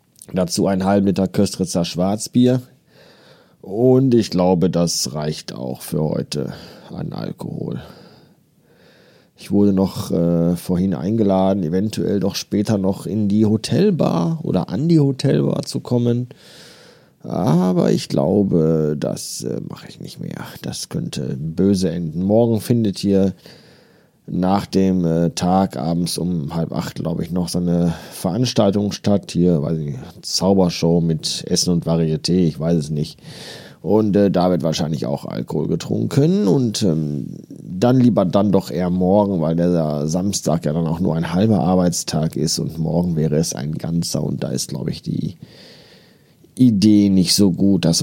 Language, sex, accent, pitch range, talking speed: German, male, German, 85-105 Hz, 155 wpm